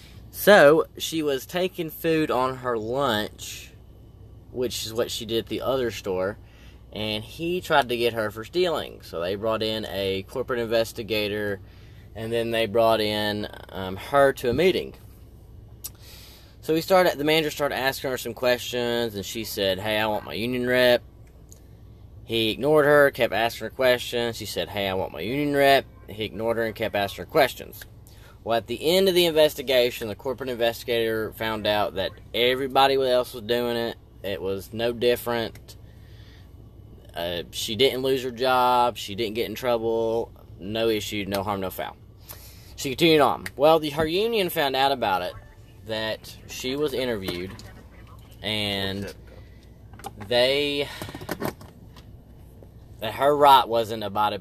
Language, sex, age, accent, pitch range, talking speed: English, male, 20-39, American, 105-125 Hz, 160 wpm